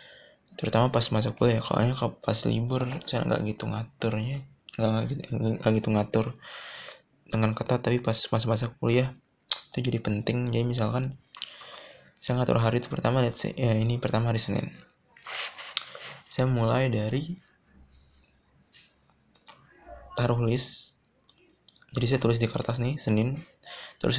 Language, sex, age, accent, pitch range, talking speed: Indonesian, male, 20-39, native, 105-125 Hz, 125 wpm